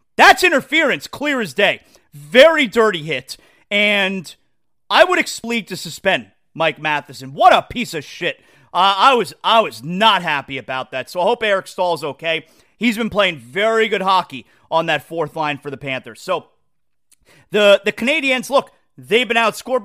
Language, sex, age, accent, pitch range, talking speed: English, male, 30-49, American, 150-225 Hz, 170 wpm